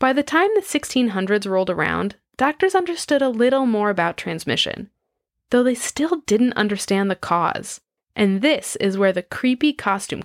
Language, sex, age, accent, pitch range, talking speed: English, female, 10-29, American, 190-260 Hz, 165 wpm